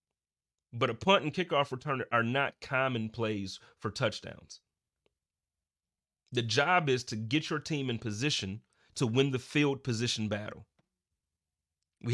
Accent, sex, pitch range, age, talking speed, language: American, male, 110-140 Hz, 30-49, 140 wpm, English